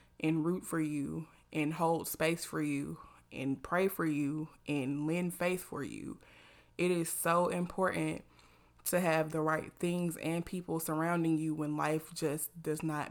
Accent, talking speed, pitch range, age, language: American, 165 wpm, 155-175 Hz, 20-39, English